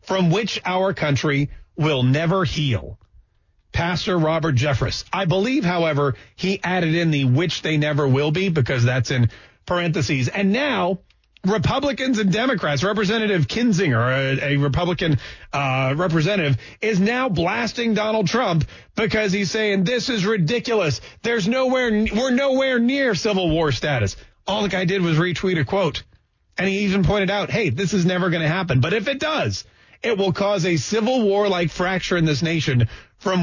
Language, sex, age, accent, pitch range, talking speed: English, male, 40-59, American, 145-210 Hz, 165 wpm